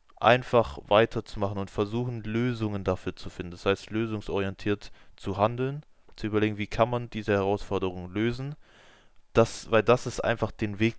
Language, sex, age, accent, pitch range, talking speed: German, male, 20-39, German, 100-120 Hz, 155 wpm